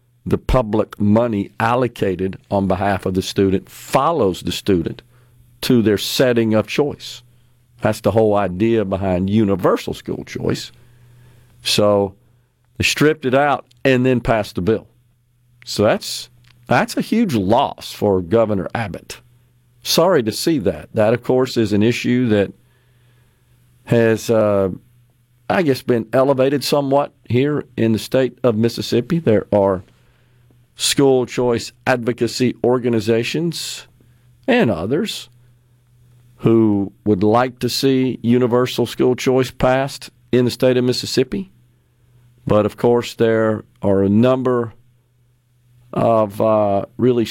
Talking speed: 125 wpm